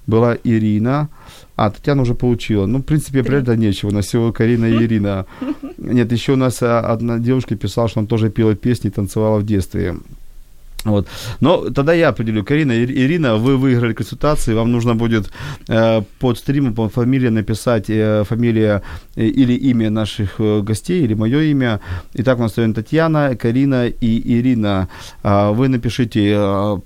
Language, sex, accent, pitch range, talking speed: Ukrainian, male, native, 100-120 Hz, 165 wpm